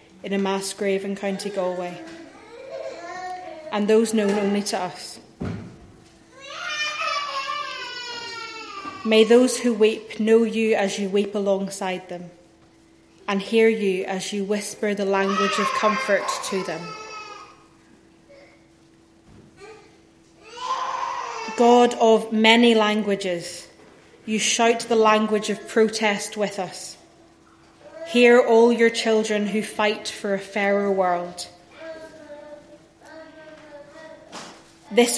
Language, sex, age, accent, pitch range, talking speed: English, female, 30-49, British, 195-245 Hz, 100 wpm